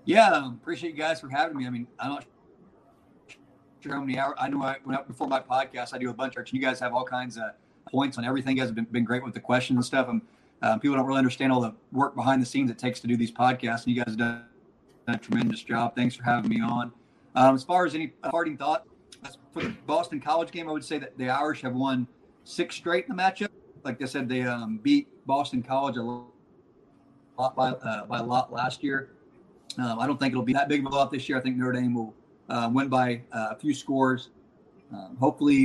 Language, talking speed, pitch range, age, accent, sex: English, 250 wpm, 120-140 Hz, 40-59, American, male